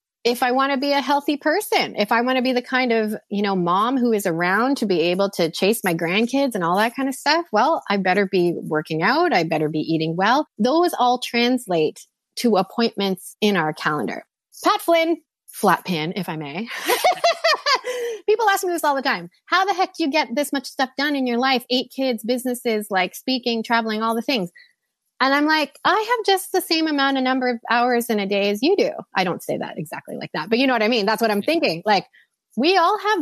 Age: 30-49